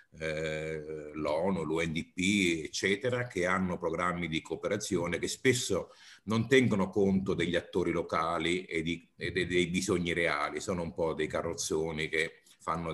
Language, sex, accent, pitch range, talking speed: Italian, male, native, 85-105 Hz, 135 wpm